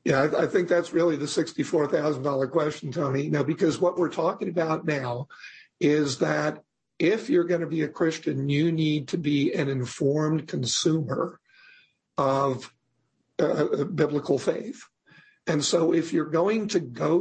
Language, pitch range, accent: English, 145-175 Hz, American